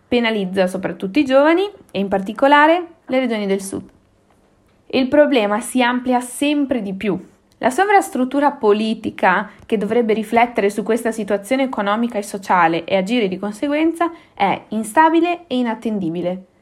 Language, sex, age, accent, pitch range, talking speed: Italian, female, 20-39, native, 200-255 Hz, 135 wpm